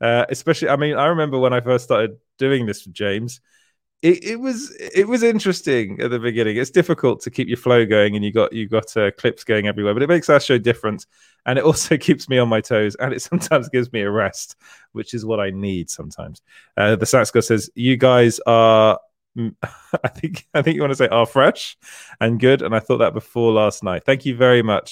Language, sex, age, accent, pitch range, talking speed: English, male, 20-39, British, 115-145 Hz, 235 wpm